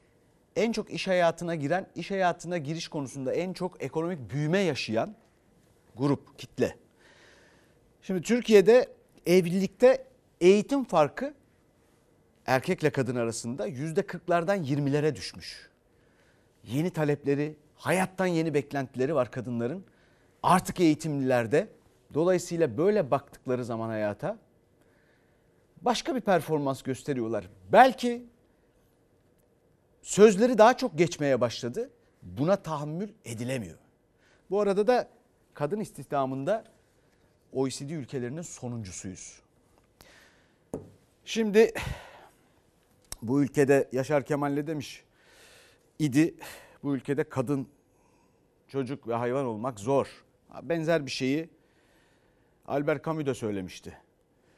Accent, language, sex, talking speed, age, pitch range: native, Turkish, male, 95 wpm, 40-59, 130-180 Hz